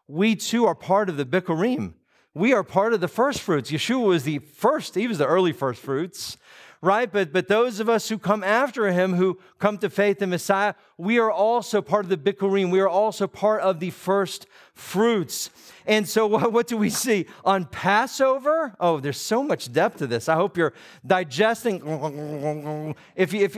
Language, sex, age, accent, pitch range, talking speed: English, male, 40-59, American, 175-235 Hz, 195 wpm